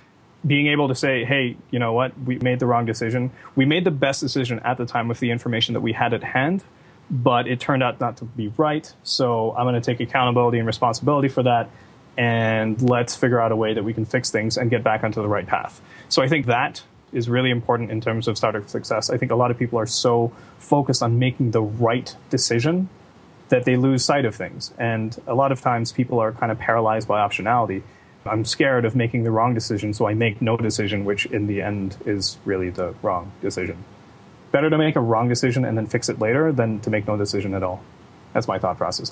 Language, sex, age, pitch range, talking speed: English, male, 20-39, 110-130 Hz, 235 wpm